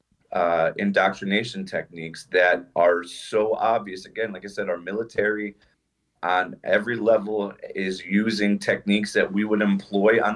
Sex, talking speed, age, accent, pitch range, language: male, 140 wpm, 40-59, American, 95-105 Hz, English